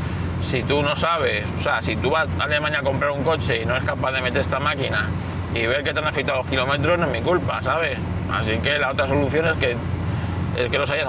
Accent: Spanish